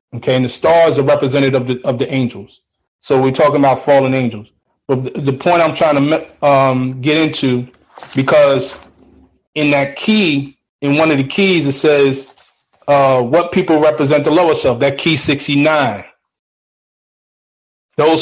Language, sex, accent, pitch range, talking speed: English, male, American, 130-155 Hz, 160 wpm